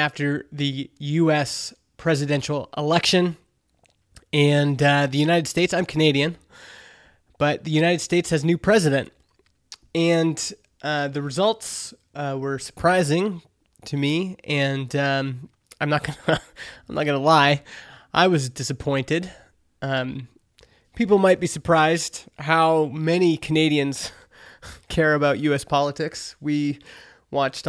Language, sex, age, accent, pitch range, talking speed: English, male, 20-39, American, 140-165 Hz, 125 wpm